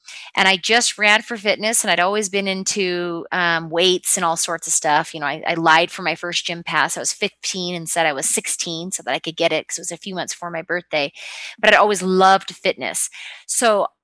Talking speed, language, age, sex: 250 wpm, English, 30-49, female